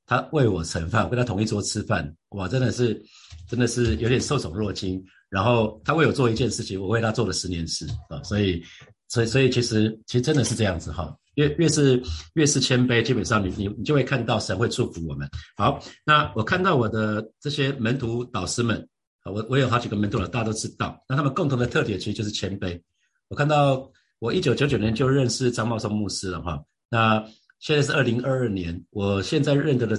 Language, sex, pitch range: Chinese, male, 100-130 Hz